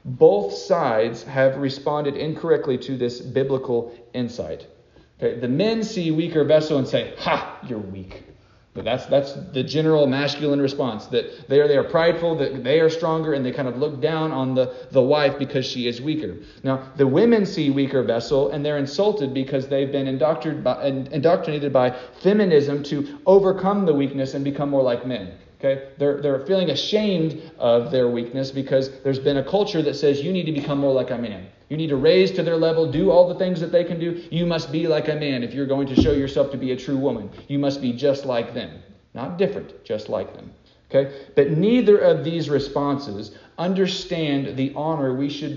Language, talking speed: English, 205 wpm